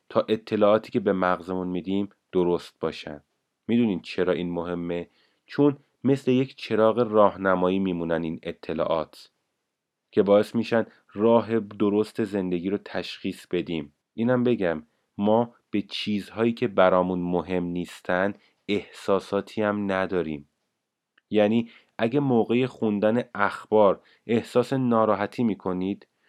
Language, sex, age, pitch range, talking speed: Persian, male, 30-49, 95-115 Hz, 110 wpm